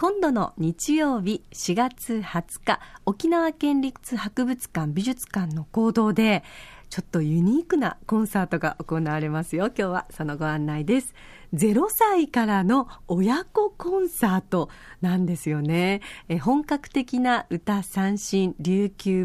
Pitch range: 175-260 Hz